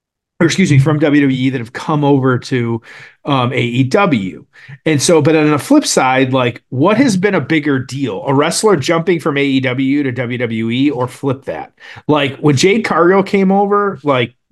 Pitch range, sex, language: 135-175 Hz, male, English